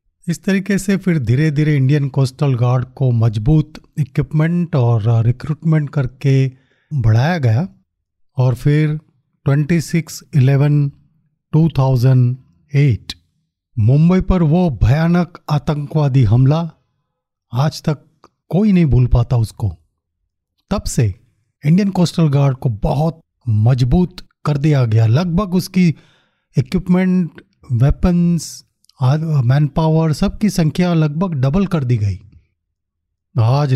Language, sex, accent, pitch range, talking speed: Hindi, male, native, 125-160 Hz, 110 wpm